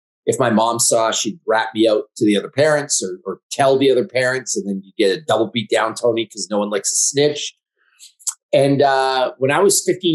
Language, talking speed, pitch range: English, 230 wpm, 120-150 Hz